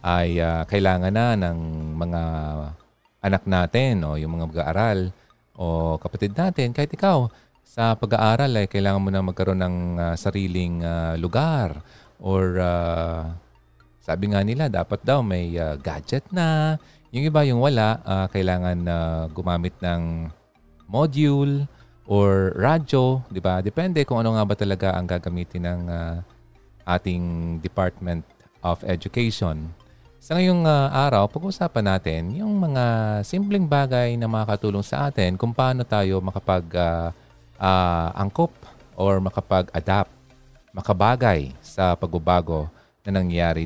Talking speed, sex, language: 130 wpm, male, Filipino